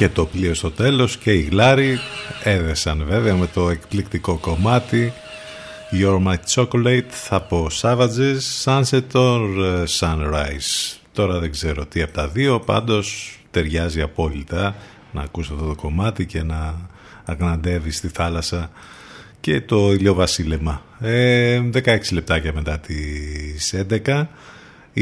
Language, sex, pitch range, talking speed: Greek, male, 80-110 Hz, 120 wpm